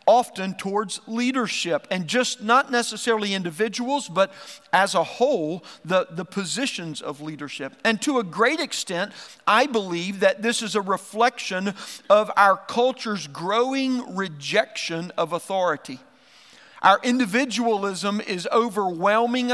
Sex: male